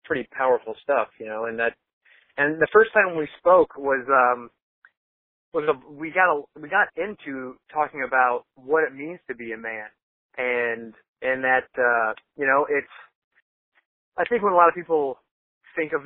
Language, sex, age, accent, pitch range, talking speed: English, male, 30-49, American, 125-150 Hz, 180 wpm